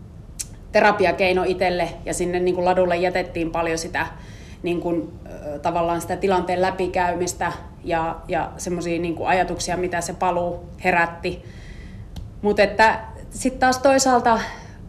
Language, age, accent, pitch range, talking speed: Finnish, 30-49, native, 170-200 Hz, 95 wpm